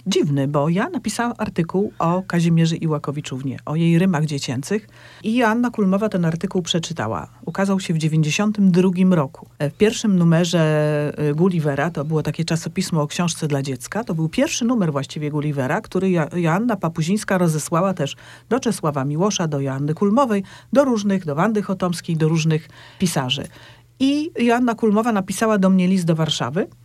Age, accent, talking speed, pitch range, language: 40-59, native, 155 wpm, 155-210 Hz, Polish